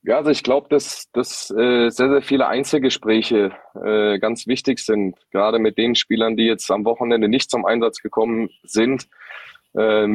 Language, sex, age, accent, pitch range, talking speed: German, male, 20-39, German, 105-120 Hz, 170 wpm